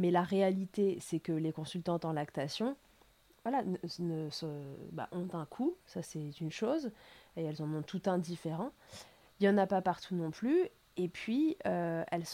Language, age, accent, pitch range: French, 20-39, French, 170-205 Hz